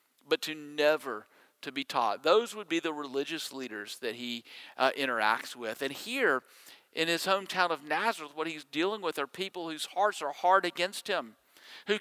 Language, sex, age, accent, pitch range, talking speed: English, male, 50-69, American, 160-215 Hz, 185 wpm